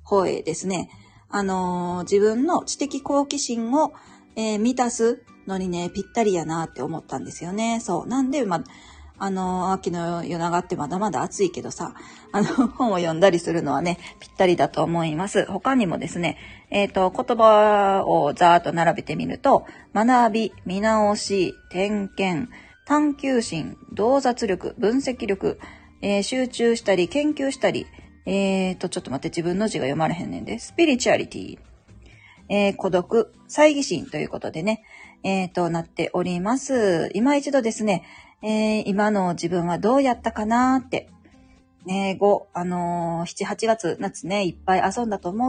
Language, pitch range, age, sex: Japanese, 175-230 Hz, 40-59, female